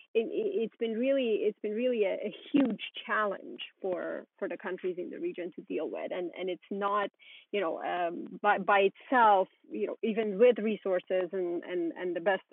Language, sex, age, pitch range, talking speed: English, female, 30-49, 190-235 Hz, 190 wpm